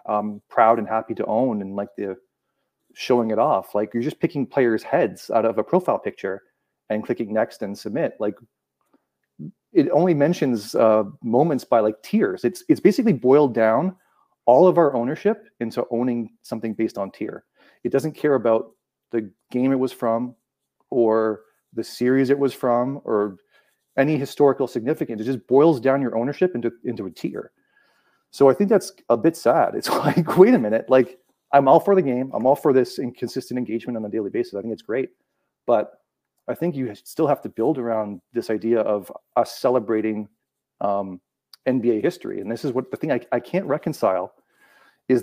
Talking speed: 185 wpm